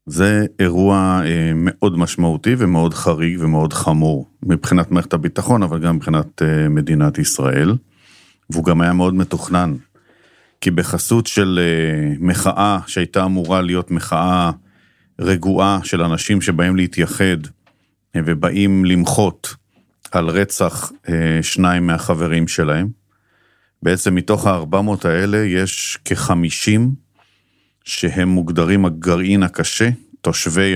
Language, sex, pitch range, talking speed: Hebrew, male, 85-100 Hz, 105 wpm